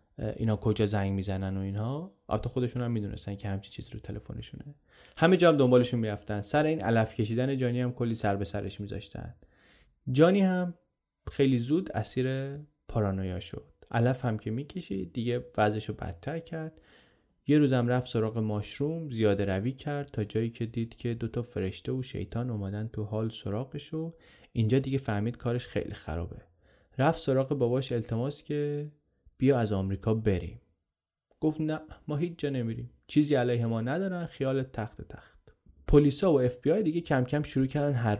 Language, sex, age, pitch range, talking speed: Persian, male, 30-49, 105-140 Hz, 175 wpm